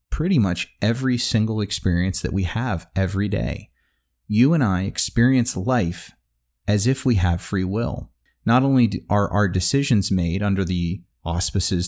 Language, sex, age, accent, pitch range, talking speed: English, male, 30-49, American, 90-115 Hz, 150 wpm